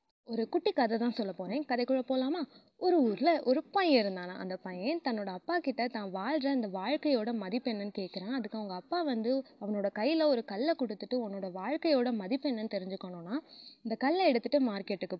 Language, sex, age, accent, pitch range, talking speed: Tamil, female, 20-39, native, 205-285 Hz, 160 wpm